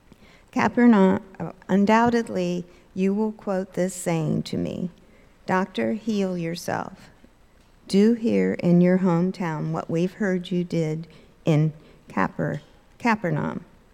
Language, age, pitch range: English, 50-69, 160-190 Hz